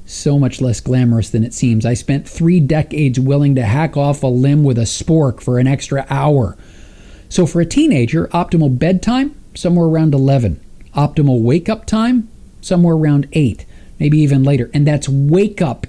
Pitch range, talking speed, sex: 130-165 Hz, 170 wpm, male